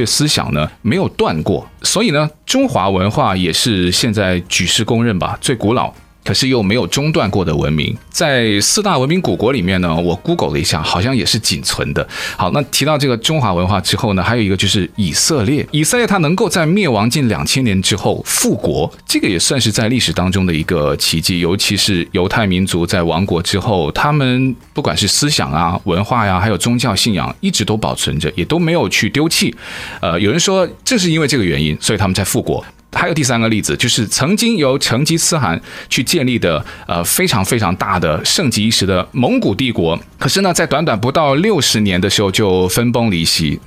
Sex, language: male, Chinese